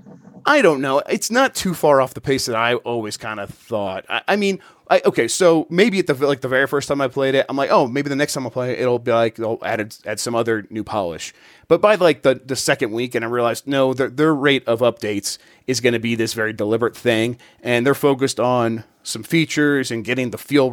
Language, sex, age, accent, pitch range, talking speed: English, male, 30-49, American, 105-140 Hz, 260 wpm